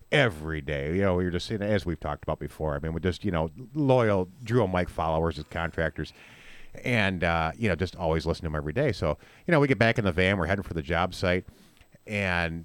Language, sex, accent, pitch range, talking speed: English, male, American, 85-115 Hz, 260 wpm